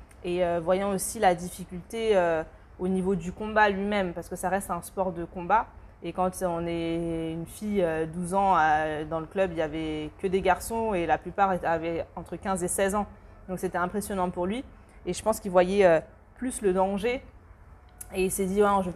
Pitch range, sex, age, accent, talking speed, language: 165-195 Hz, female, 20-39, French, 220 wpm, French